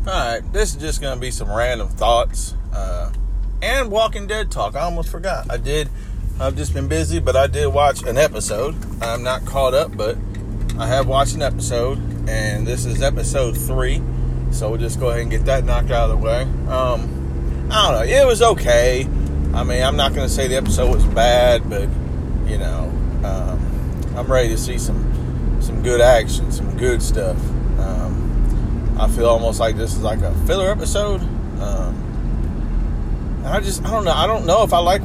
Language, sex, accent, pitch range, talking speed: English, male, American, 70-115 Hz, 190 wpm